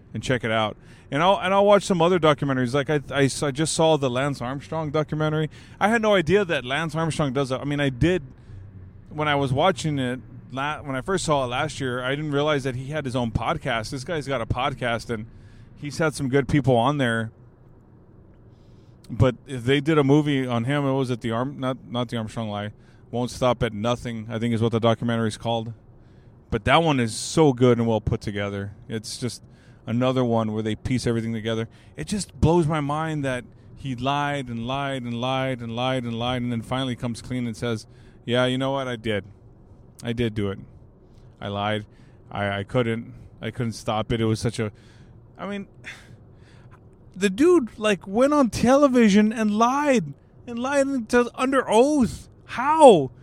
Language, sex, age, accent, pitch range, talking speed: English, male, 20-39, American, 115-160 Hz, 205 wpm